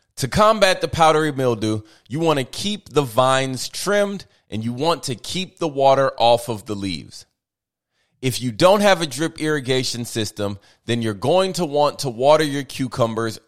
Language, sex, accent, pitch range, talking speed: English, male, American, 115-160 Hz, 180 wpm